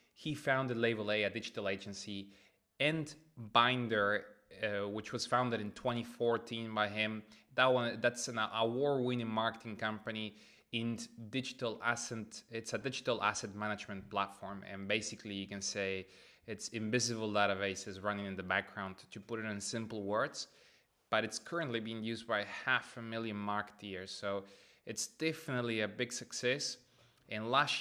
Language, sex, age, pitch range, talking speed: English, male, 20-39, 100-120 Hz, 150 wpm